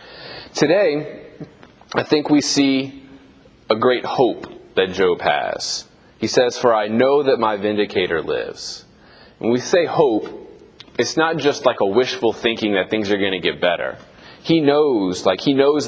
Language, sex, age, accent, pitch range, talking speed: English, male, 30-49, American, 105-140 Hz, 160 wpm